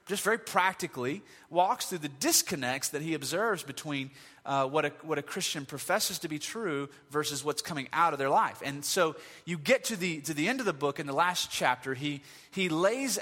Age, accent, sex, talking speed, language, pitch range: 30-49, American, male, 215 wpm, English, 145-205 Hz